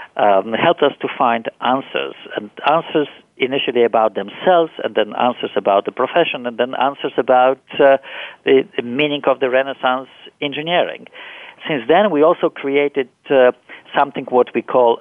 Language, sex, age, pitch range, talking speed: English, male, 50-69, 120-155 Hz, 155 wpm